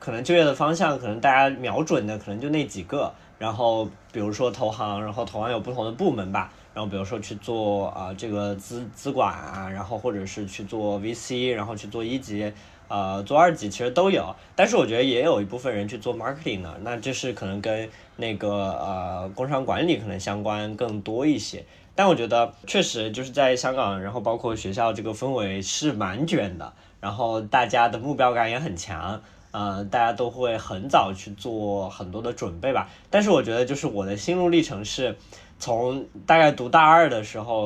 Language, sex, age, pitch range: Chinese, male, 20-39, 105-140 Hz